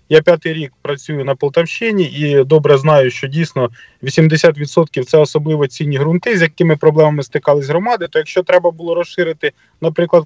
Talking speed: 160 wpm